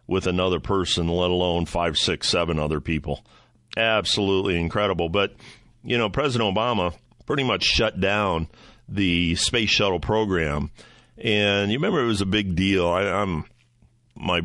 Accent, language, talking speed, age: American, English, 150 wpm, 50-69